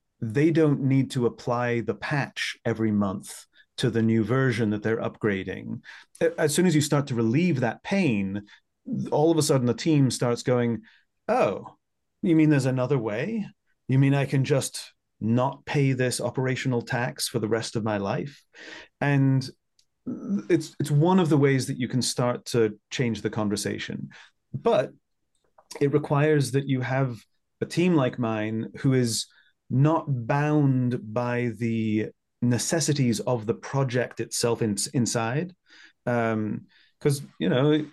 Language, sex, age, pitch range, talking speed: English, male, 30-49, 115-145 Hz, 155 wpm